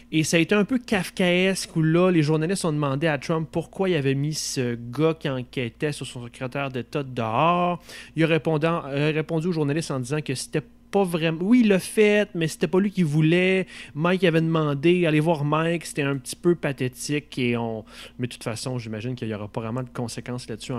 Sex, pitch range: male, 125-175 Hz